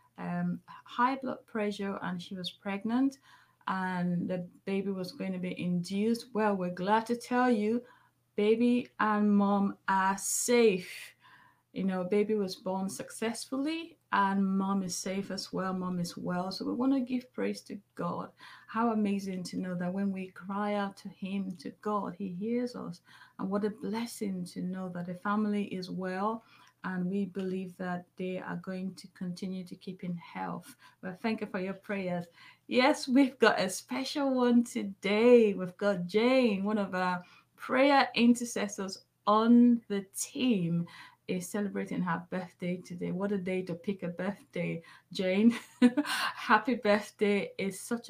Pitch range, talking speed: 185-225 Hz, 165 wpm